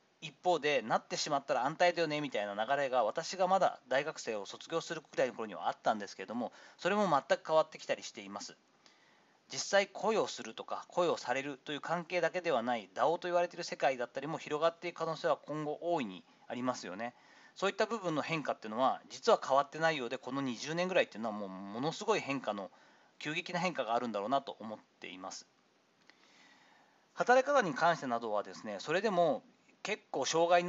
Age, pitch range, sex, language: 40-59, 125-180 Hz, male, Japanese